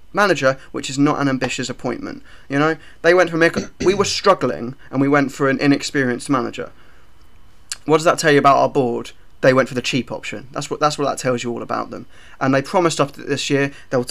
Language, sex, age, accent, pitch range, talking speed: English, male, 20-39, British, 130-160 Hz, 225 wpm